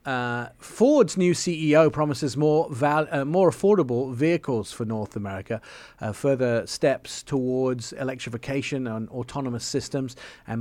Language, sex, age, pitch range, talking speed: English, male, 40-59, 115-140 Hz, 130 wpm